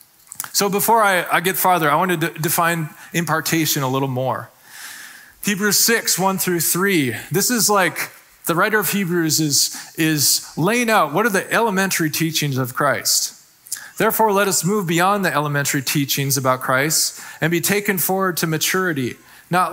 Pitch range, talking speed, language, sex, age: 145-185 Hz, 160 wpm, English, male, 20-39